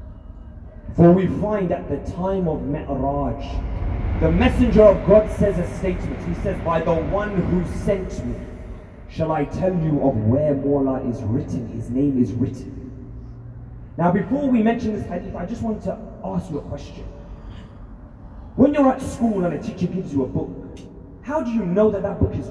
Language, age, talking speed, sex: Urdu, 30-49, 185 wpm, male